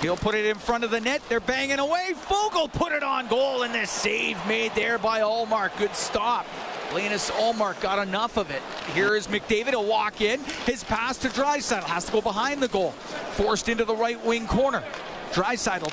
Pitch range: 195-240 Hz